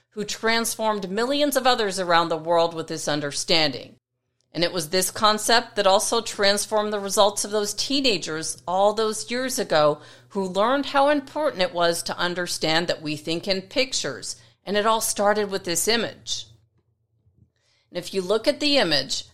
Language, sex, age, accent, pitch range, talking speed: English, female, 40-59, American, 165-220 Hz, 170 wpm